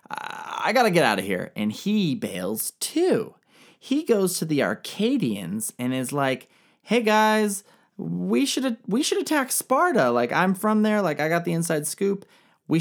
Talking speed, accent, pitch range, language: 180 wpm, American, 145-220 Hz, English